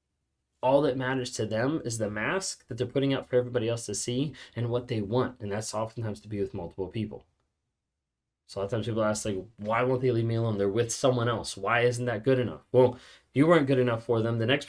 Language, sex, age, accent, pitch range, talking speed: English, male, 20-39, American, 110-135 Hz, 250 wpm